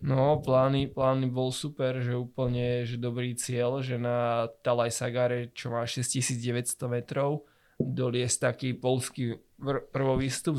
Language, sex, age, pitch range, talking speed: Slovak, male, 20-39, 120-130 Hz, 125 wpm